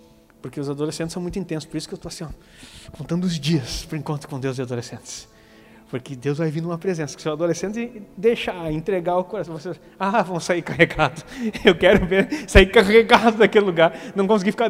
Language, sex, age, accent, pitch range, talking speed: Portuguese, male, 20-39, Brazilian, 160-205 Hz, 200 wpm